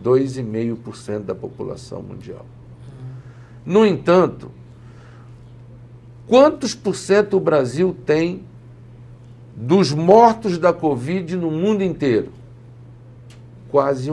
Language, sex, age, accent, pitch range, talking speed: Portuguese, male, 60-79, Brazilian, 120-170 Hz, 80 wpm